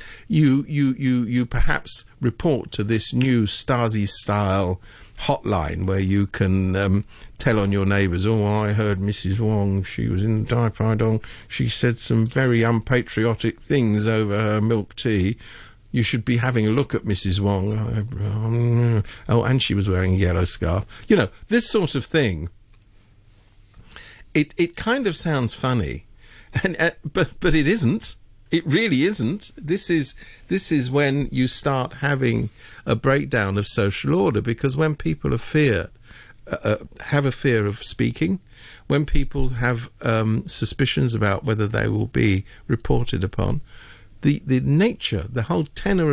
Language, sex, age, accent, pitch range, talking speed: English, male, 50-69, British, 105-140 Hz, 155 wpm